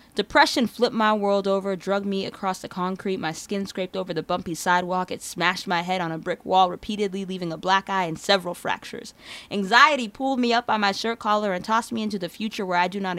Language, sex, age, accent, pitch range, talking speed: English, female, 20-39, American, 180-220 Hz, 230 wpm